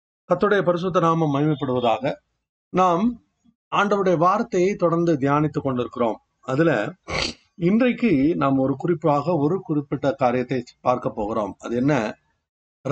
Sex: male